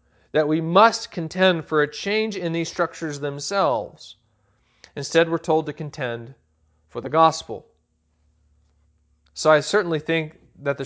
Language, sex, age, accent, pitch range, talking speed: English, male, 40-59, American, 125-160 Hz, 140 wpm